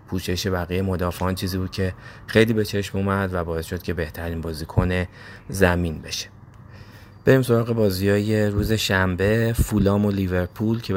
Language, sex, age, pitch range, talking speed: Persian, male, 30-49, 90-105 Hz, 150 wpm